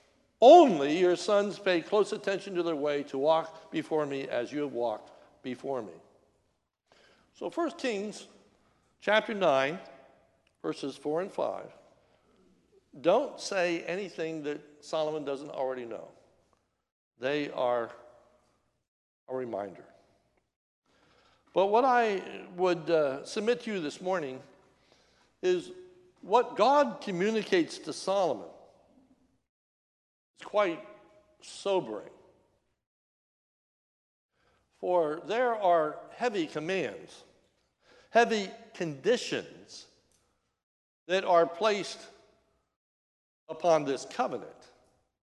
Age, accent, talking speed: 60-79, American, 95 wpm